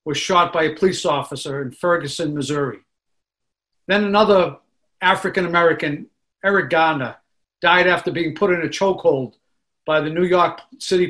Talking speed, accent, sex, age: 140 wpm, American, male, 50-69